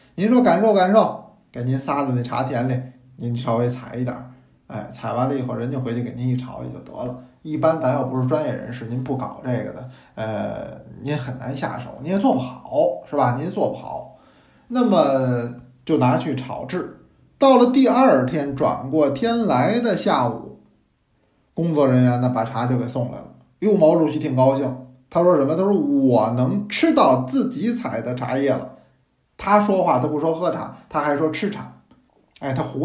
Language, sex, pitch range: Chinese, male, 125-160 Hz